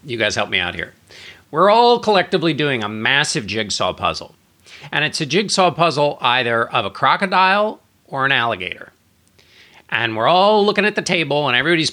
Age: 40-59